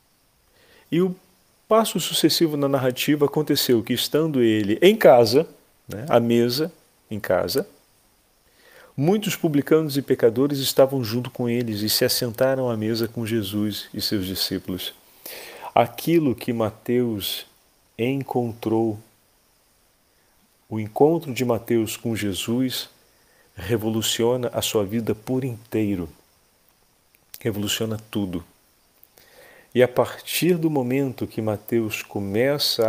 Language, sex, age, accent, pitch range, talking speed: Portuguese, male, 40-59, Brazilian, 105-135 Hz, 110 wpm